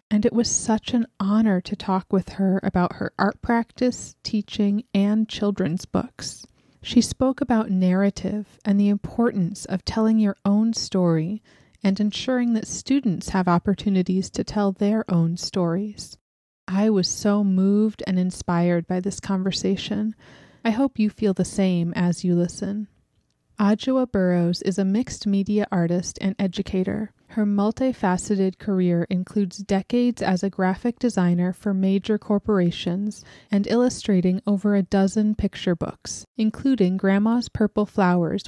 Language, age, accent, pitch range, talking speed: English, 30-49, American, 185-215 Hz, 140 wpm